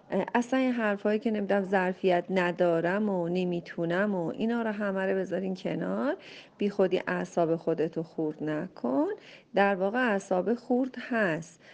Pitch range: 175-225 Hz